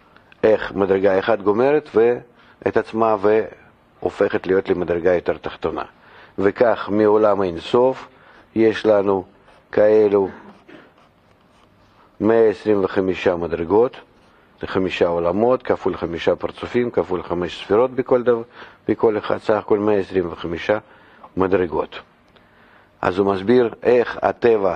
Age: 50-69